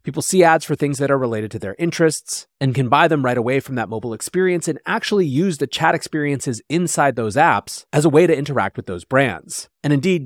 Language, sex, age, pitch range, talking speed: English, male, 30-49, 120-160 Hz, 235 wpm